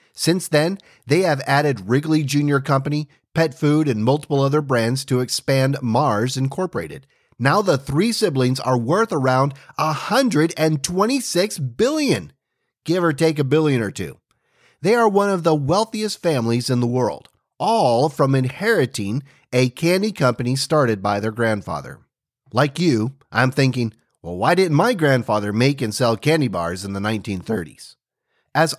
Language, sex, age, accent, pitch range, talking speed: English, male, 40-59, American, 125-165 Hz, 150 wpm